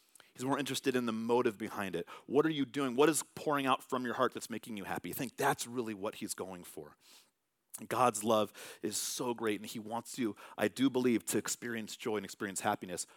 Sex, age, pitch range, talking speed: male, 30-49, 110-130 Hz, 220 wpm